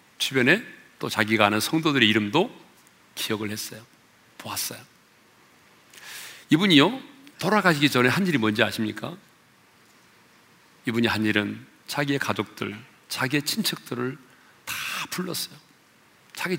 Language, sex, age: Korean, male, 40-59